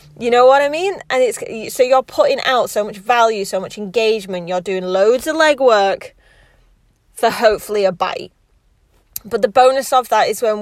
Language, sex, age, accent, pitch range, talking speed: English, female, 30-49, British, 195-240 Hz, 185 wpm